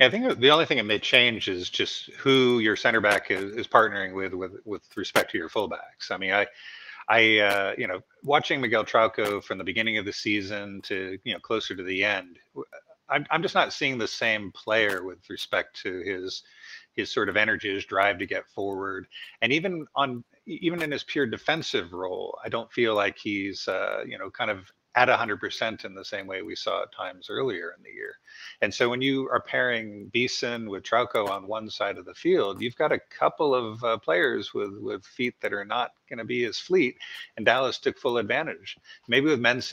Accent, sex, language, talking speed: American, male, English, 215 wpm